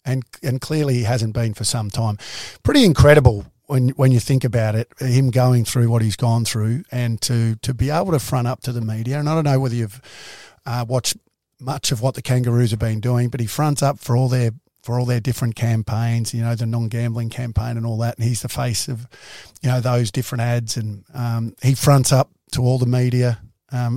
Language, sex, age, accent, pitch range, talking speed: English, male, 50-69, Australian, 115-130 Hz, 245 wpm